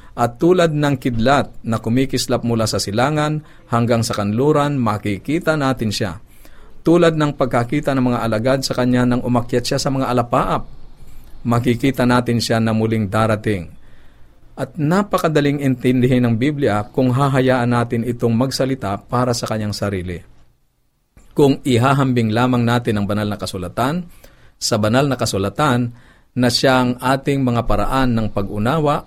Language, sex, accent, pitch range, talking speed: Filipino, male, native, 110-135 Hz, 140 wpm